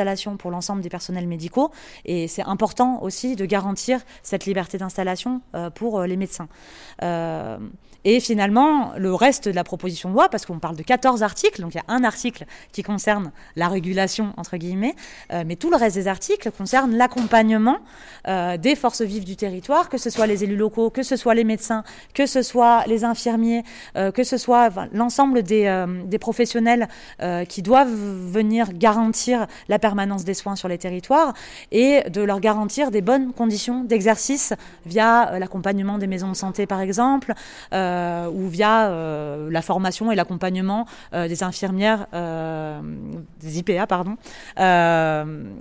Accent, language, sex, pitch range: French, English, female, 185-235 Hz